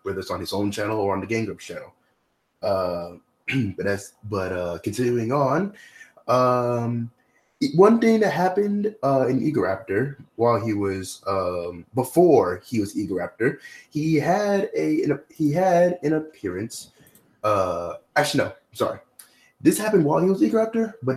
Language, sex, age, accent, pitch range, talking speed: English, male, 20-39, American, 110-150 Hz, 160 wpm